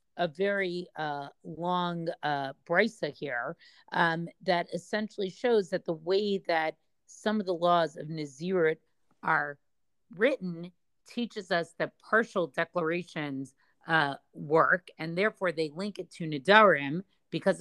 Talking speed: 130 wpm